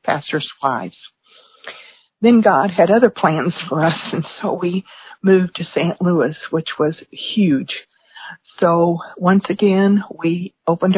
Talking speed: 130 wpm